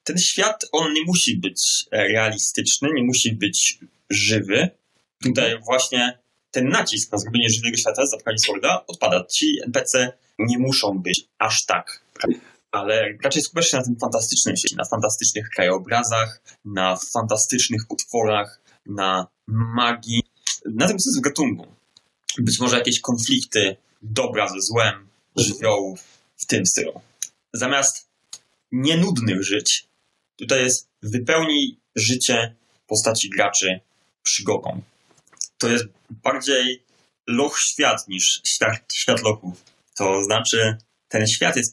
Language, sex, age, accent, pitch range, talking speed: Polish, male, 20-39, native, 105-125 Hz, 120 wpm